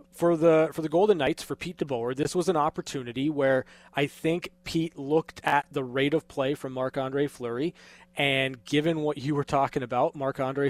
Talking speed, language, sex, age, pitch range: 190 wpm, English, male, 20-39, 135-160 Hz